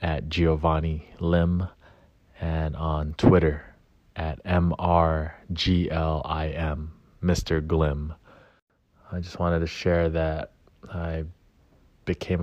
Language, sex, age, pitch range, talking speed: English, male, 20-39, 80-90 Hz, 110 wpm